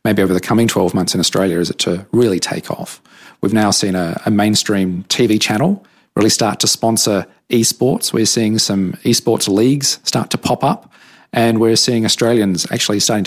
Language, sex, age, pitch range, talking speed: English, male, 40-59, 95-120 Hz, 190 wpm